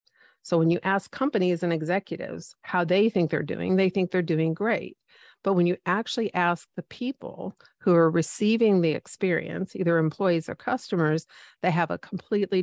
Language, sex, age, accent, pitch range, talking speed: English, female, 50-69, American, 165-205 Hz, 175 wpm